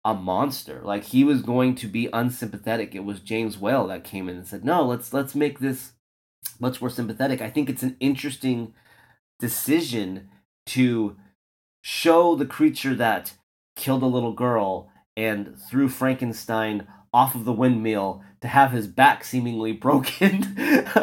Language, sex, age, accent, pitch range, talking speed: English, male, 30-49, American, 110-155 Hz, 155 wpm